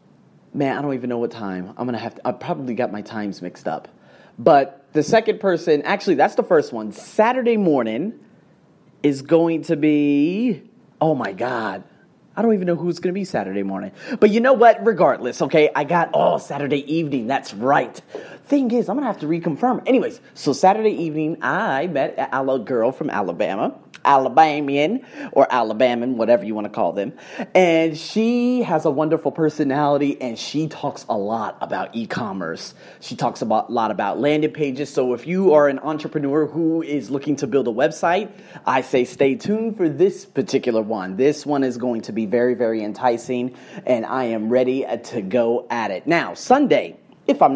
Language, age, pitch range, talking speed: English, 30-49, 125-180 Hz, 185 wpm